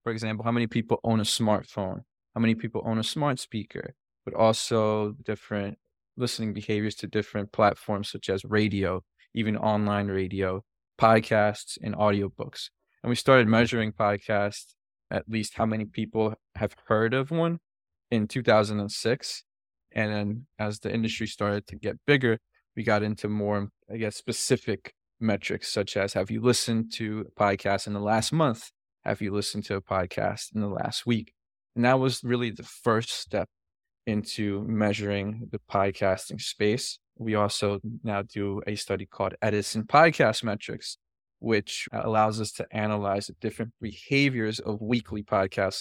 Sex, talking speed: male, 155 wpm